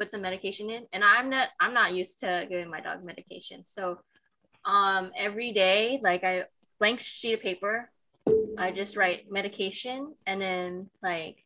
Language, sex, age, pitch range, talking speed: English, female, 20-39, 185-235 Hz, 160 wpm